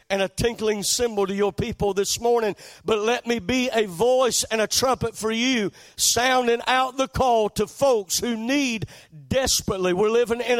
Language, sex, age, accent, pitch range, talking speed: English, male, 50-69, American, 210-265 Hz, 180 wpm